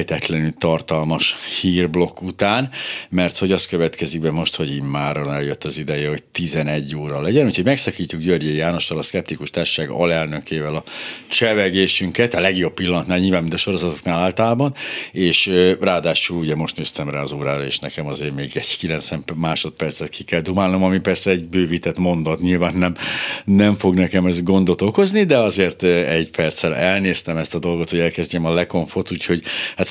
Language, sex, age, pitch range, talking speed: Hungarian, male, 60-79, 85-100 Hz, 165 wpm